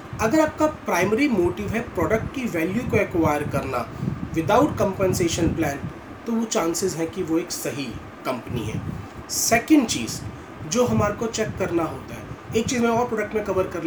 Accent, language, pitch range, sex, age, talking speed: native, Hindi, 165-225 Hz, male, 30-49, 175 wpm